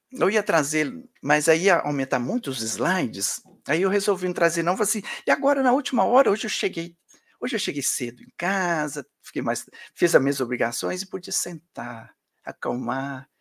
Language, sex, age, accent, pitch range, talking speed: Portuguese, male, 60-79, Brazilian, 160-235 Hz, 190 wpm